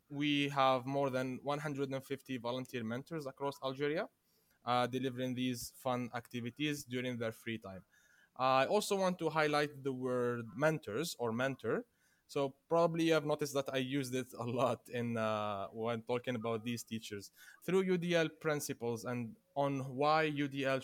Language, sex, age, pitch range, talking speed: English, male, 20-39, 125-150 Hz, 155 wpm